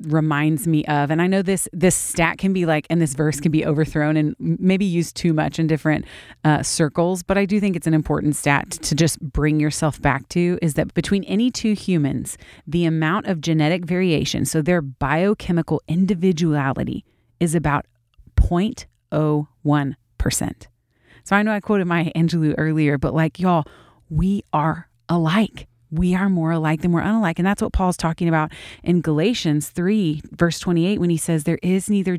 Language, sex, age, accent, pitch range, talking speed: English, female, 30-49, American, 150-180 Hz, 185 wpm